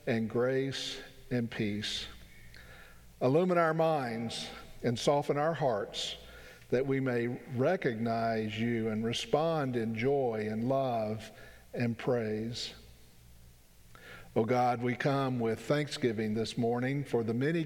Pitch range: 110-145 Hz